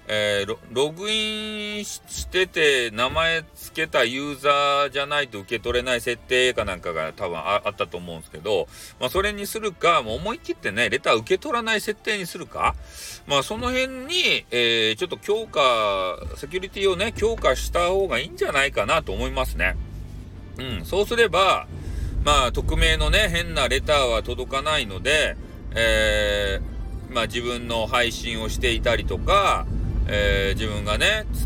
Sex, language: male, Japanese